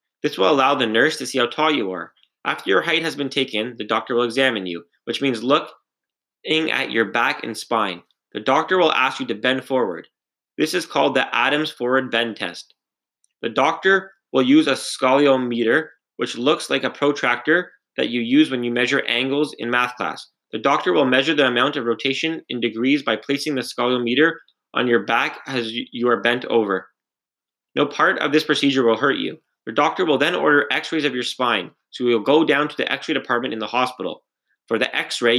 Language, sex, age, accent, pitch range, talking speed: English, male, 20-39, American, 120-145 Hz, 210 wpm